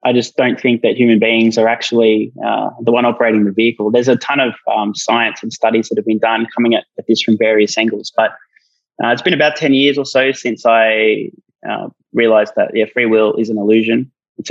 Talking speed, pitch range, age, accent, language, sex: 230 wpm, 110-120 Hz, 20-39, Australian, English, male